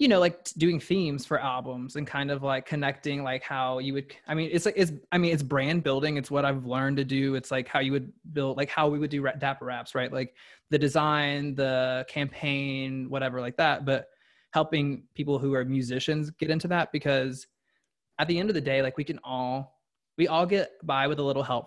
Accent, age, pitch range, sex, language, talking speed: American, 20-39, 130-150 Hz, male, English, 225 wpm